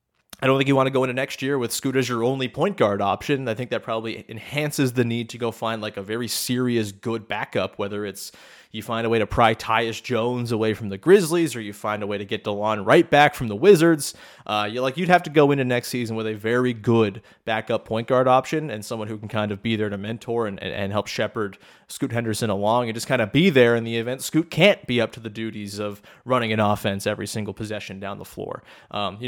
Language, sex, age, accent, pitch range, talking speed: English, male, 20-39, American, 110-130 Hz, 255 wpm